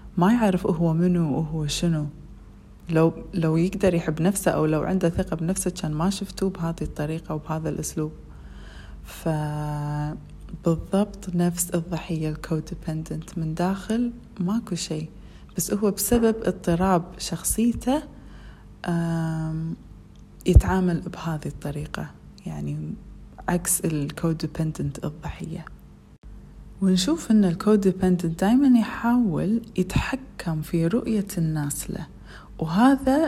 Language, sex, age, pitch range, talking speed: Arabic, female, 30-49, 155-190 Hz, 100 wpm